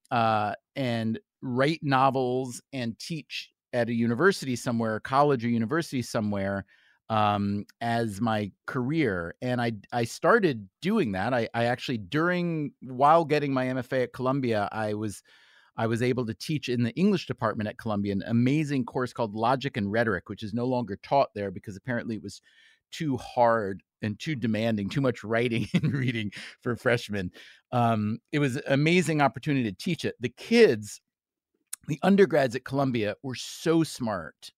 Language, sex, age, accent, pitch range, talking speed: English, male, 40-59, American, 110-145 Hz, 165 wpm